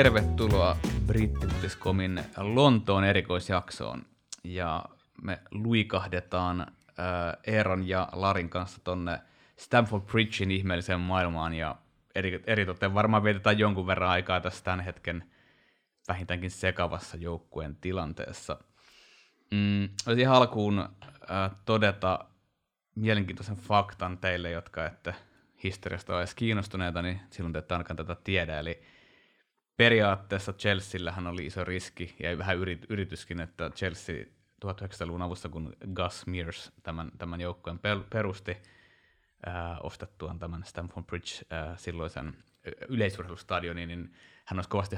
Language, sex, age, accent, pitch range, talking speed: Finnish, male, 20-39, native, 85-100 Hz, 115 wpm